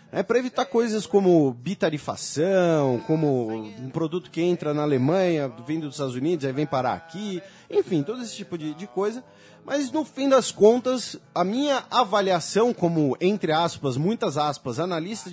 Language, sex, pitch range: Portuguese, male, 160-215 Hz